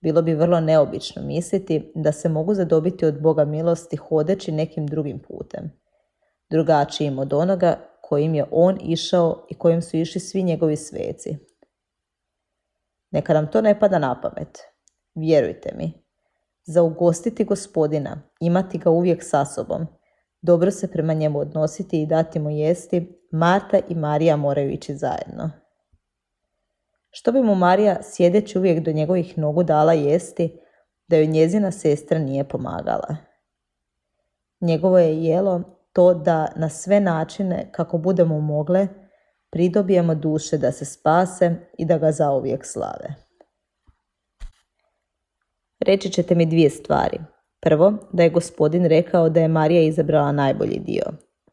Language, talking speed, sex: Croatian, 135 wpm, female